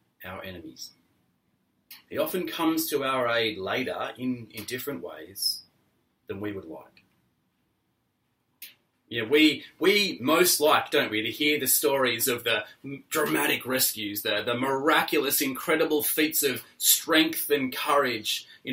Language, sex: English, male